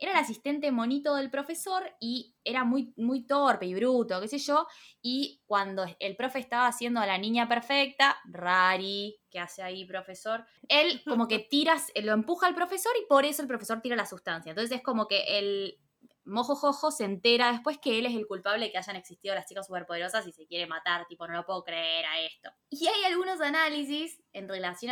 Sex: female